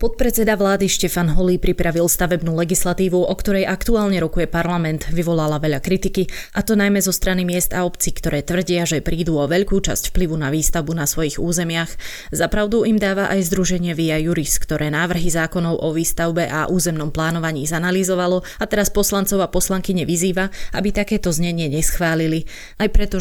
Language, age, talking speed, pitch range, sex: Slovak, 20-39, 165 wpm, 160-185 Hz, female